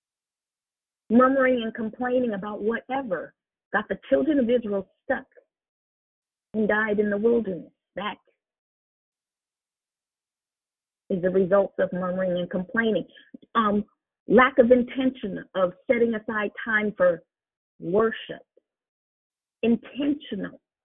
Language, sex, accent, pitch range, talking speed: English, female, American, 200-260 Hz, 100 wpm